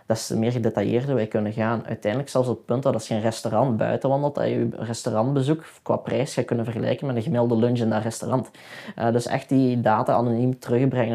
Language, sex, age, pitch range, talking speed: Dutch, male, 20-39, 115-130 Hz, 225 wpm